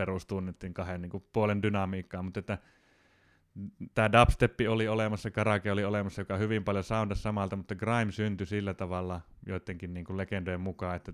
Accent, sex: native, male